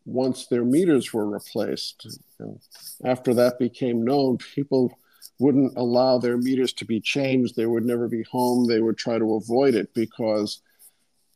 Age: 50-69